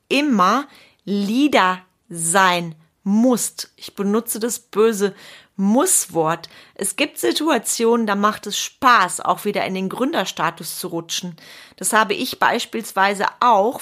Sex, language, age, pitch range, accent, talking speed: female, German, 30-49, 180-235 Hz, German, 120 wpm